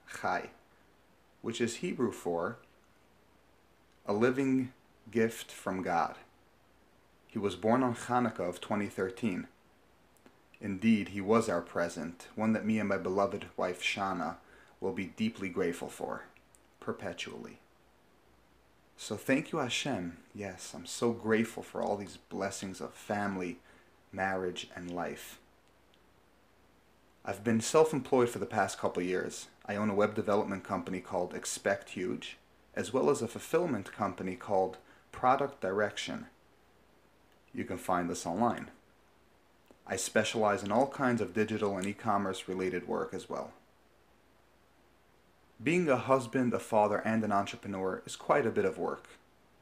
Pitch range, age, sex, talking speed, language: 95-115 Hz, 30-49, male, 135 wpm, English